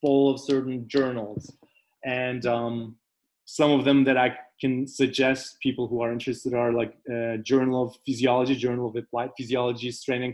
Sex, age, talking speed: male, 20-39, 170 wpm